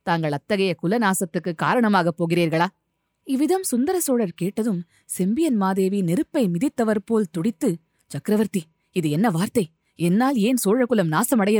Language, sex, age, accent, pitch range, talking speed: Tamil, female, 20-39, native, 165-205 Hz, 115 wpm